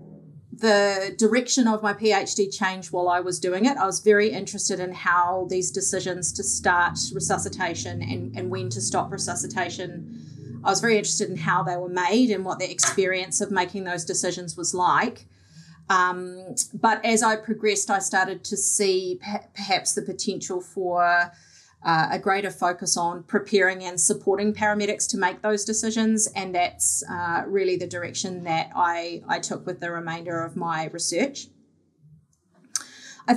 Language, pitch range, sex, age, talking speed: English, 180-220 Hz, female, 30-49, 160 wpm